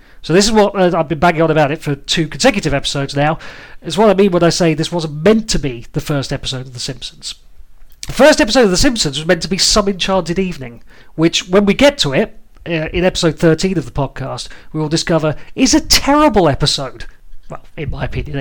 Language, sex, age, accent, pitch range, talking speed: English, male, 40-59, British, 155-210 Hz, 230 wpm